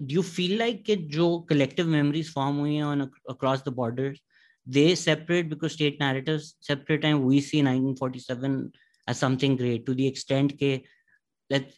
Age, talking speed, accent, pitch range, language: 20-39, 145 wpm, Indian, 130-155 Hz, English